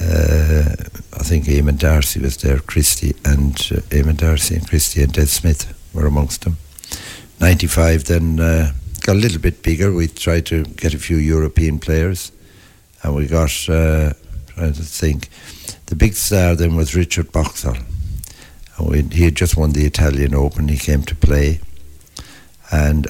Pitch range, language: 75-85 Hz, English